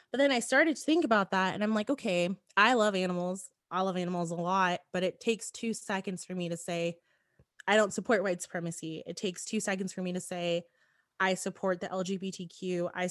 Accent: American